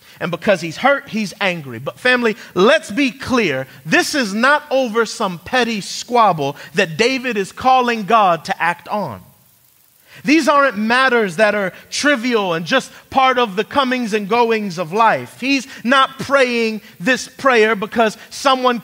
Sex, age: male, 30-49